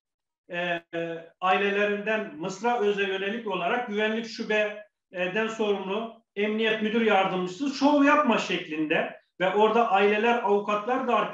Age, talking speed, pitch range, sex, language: 40-59, 105 wpm, 185-235 Hz, male, Turkish